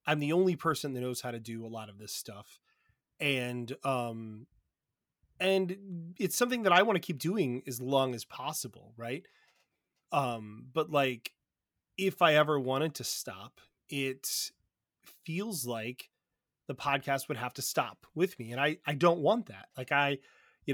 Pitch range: 125-160 Hz